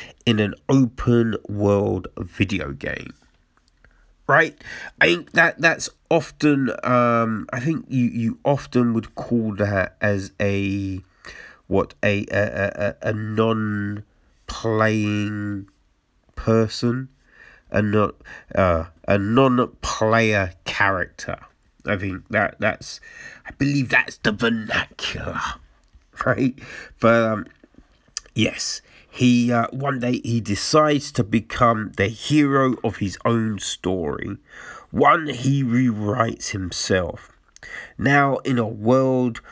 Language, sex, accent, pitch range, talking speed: English, male, British, 100-130 Hz, 110 wpm